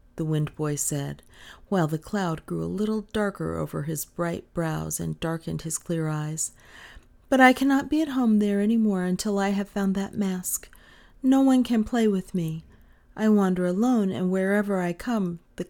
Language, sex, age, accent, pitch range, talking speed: English, female, 40-59, American, 180-295 Hz, 185 wpm